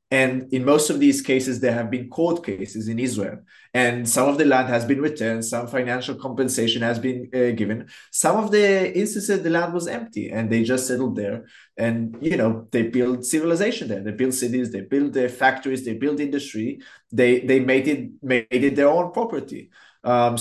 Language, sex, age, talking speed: English, male, 20-39, 200 wpm